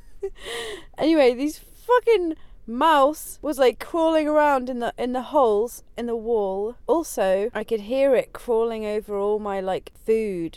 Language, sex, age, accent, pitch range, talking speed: English, female, 30-49, British, 195-270 Hz, 155 wpm